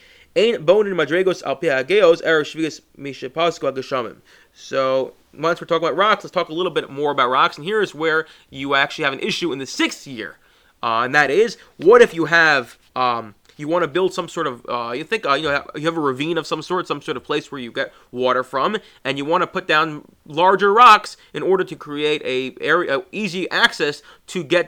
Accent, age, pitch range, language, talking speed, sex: American, 30-49, 145-185 Hz, English, 200 wpm, male